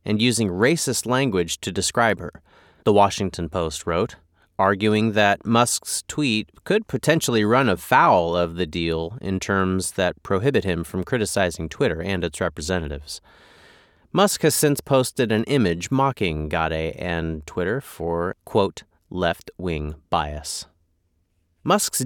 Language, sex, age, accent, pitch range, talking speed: English, male, 30-49, American, 90-130 Hz, 130 wpm